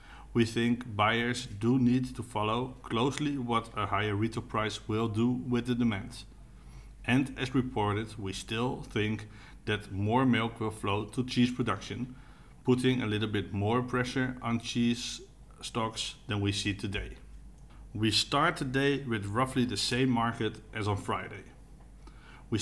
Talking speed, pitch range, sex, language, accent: 150 wpm, 105-130 Hz, male, English, Dutch